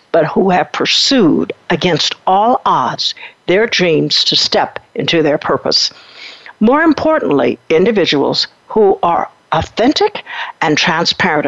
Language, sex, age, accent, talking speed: English, female, 60-79, American, 115 wpm